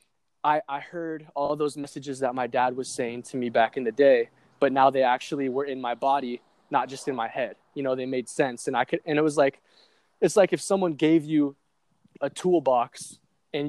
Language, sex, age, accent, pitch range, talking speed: English, male, 20-39, American, 125-145 Hz, 220 wpm